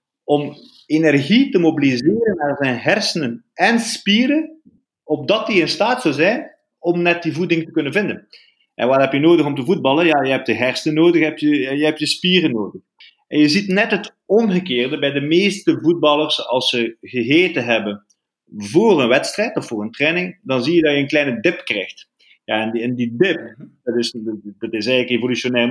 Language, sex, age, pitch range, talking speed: Dutch, male, 30-49, 135-180 Hz, 190 wpm